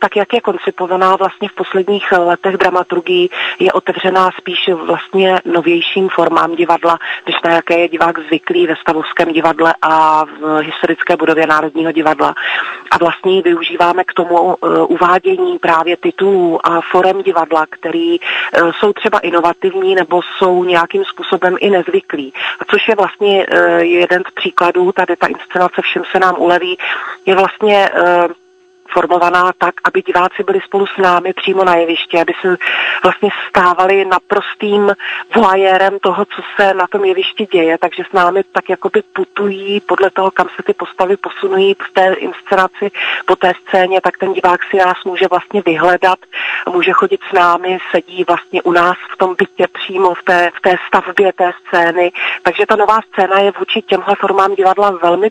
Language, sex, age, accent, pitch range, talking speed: Czech, female, 30-49, native, 175-200 Hz, 165 wpm